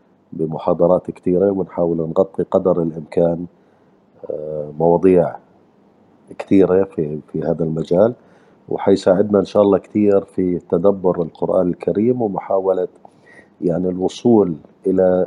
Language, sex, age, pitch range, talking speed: Arabic, male, 40-59, 85-100 Hz, 100 wpm